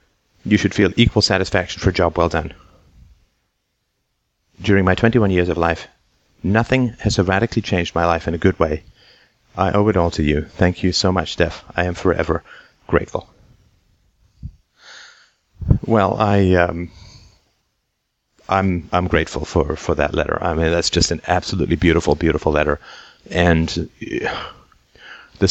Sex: male